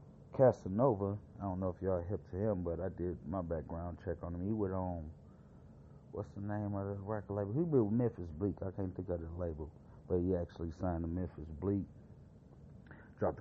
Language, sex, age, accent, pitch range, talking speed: English, male, 30-49, American, 90-115 Hz, 205 wpm